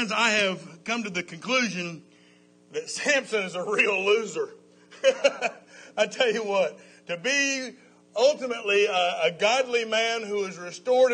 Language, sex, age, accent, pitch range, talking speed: English, male, 50-69, American, 205-290 Hz, 140 wpm